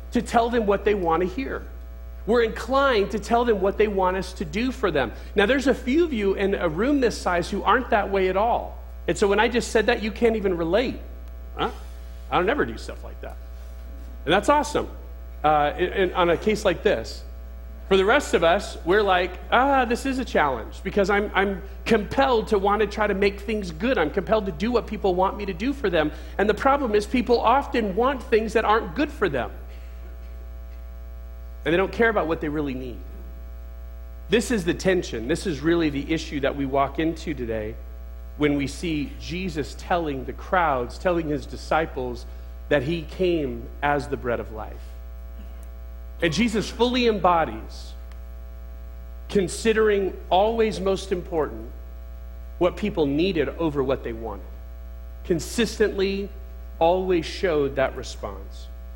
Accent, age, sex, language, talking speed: American, 40-59, male, English, 180 wpm